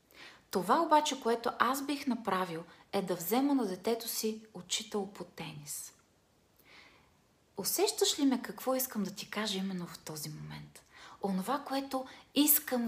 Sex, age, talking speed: female, 30-49, 140 wpm